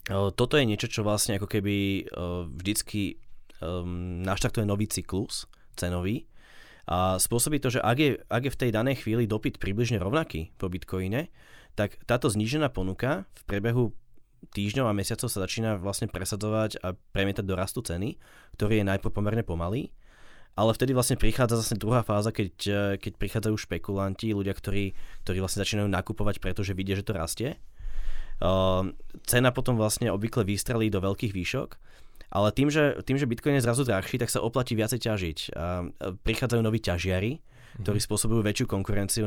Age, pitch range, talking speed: 20-39, 95-120 Hz, 160 wpm